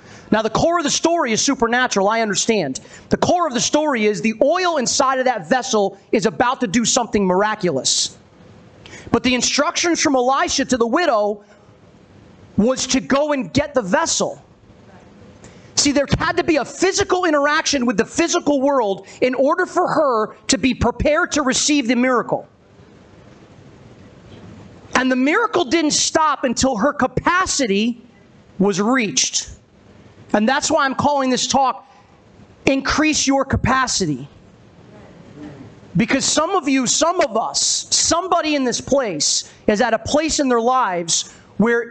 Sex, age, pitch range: male, 30-49, 225-290 Hz